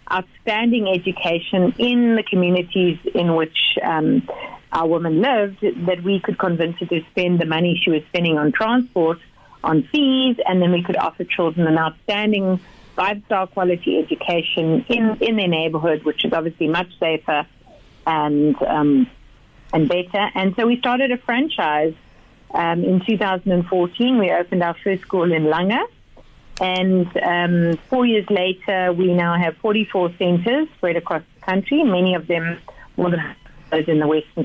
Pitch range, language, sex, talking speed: 160-195 Hz, English, female, 155 wpm